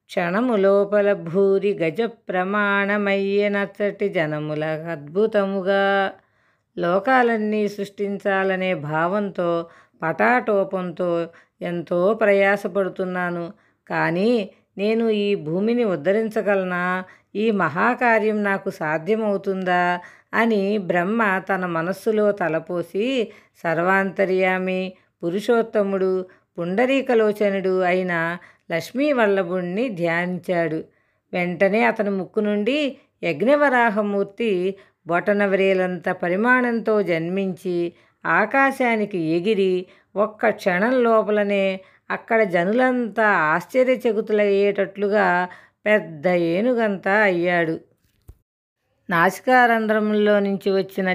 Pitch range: 180-215 Hz